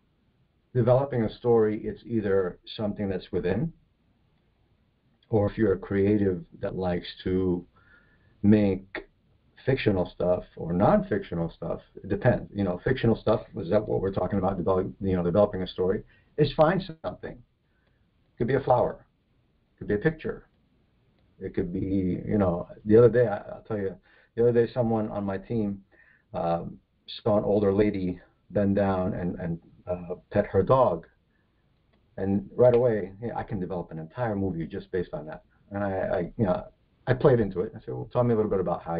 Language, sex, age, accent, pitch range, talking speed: English, male, 50-69, American, 90-115 Hz, 180 wpm